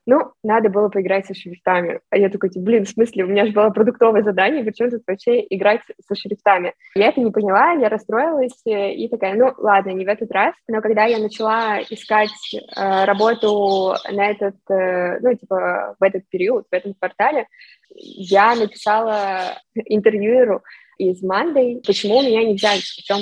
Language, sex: Russian, female